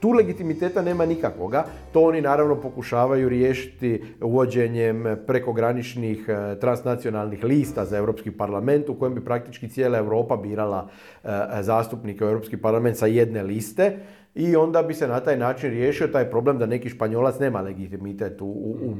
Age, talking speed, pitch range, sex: 40-59, 150 wpm, 110-165 Hz, male